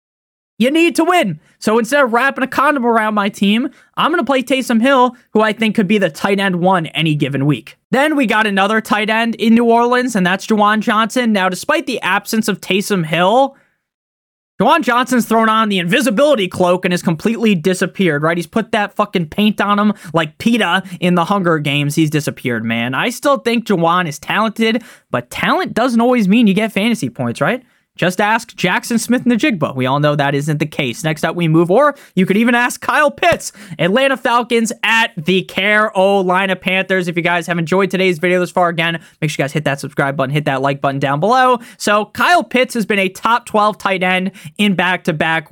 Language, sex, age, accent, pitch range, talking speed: English, male, 20-39, American, 165-230 Hz, 215 wpm